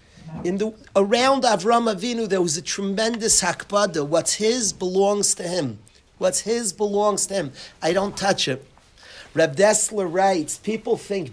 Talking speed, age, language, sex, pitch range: 150 wpm, 40-59, English, male, 155-205 Hz